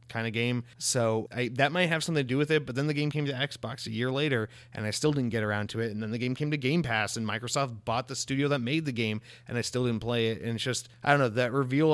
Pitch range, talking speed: 115-130 Hz, 305 wpm